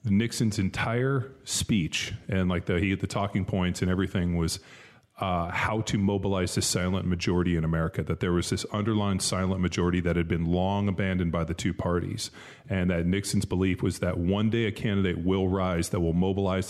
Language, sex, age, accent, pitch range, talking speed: English, male, 30-49, American, 90-105 Hz, 195 wpm